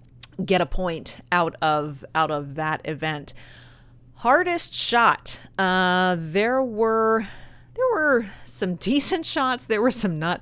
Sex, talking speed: female, 130 wpm